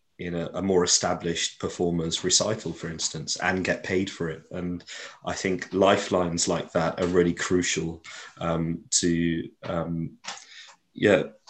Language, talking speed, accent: English, 140 wpm, British